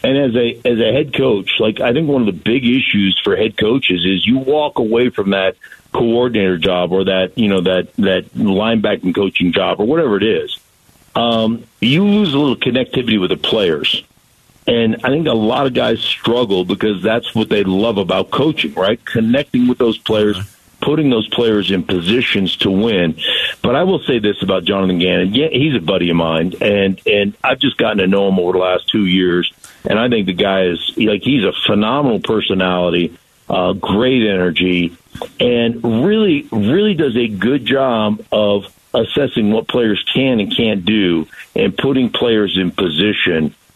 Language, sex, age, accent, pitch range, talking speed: English, male, 50-69, American, 95-115 Hz, 185 wpm